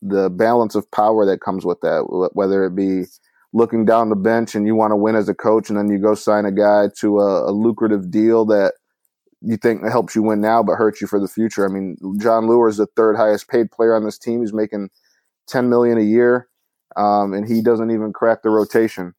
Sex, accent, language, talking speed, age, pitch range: male, American, English, 235 wpm, 20-39, 105-115 Hz